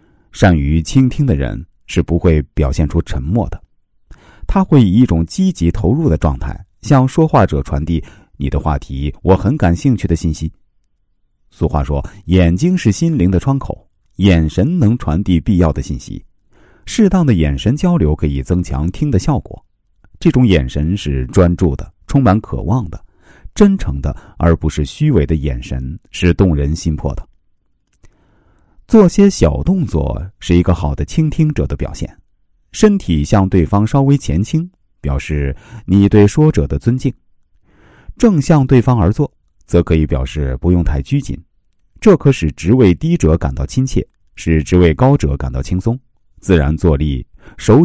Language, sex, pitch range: Chinese, male, 75-115 Hz